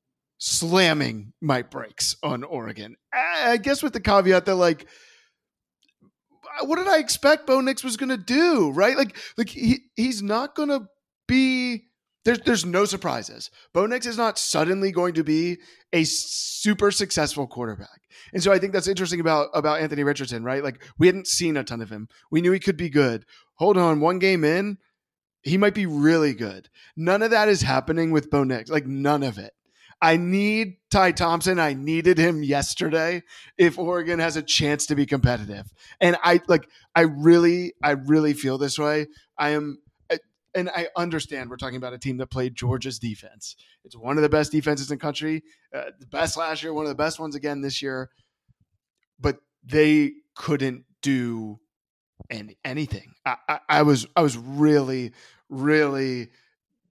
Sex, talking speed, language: male, 180 wpm, English